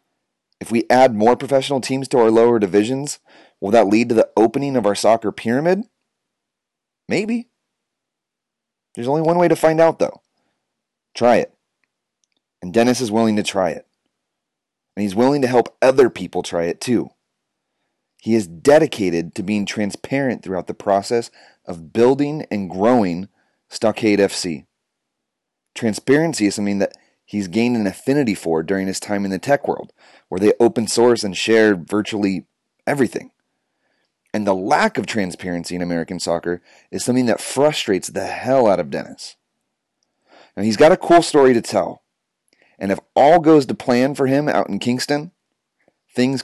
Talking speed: 160 wpm